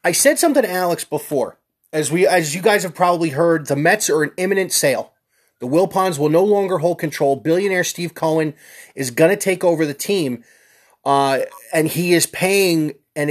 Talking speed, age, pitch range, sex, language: 195 wpm, 30-49, 145-180 Hz, male, English